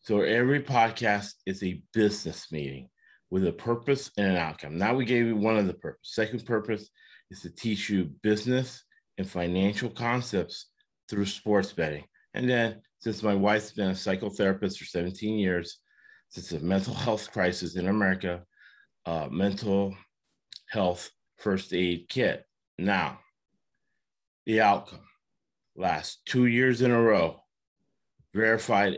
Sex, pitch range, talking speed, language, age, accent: male, 95-115 Hz, 140 wpm, English, 30-49, American